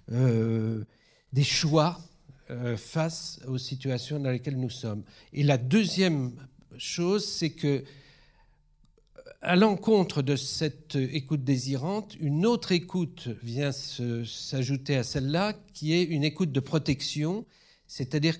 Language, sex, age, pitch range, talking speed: French, male, 50-69, 135-180 Hz, 125 wpm